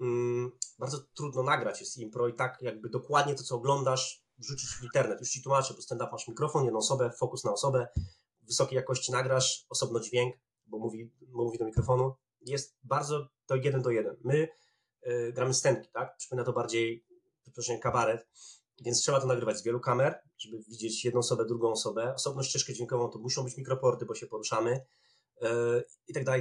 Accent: native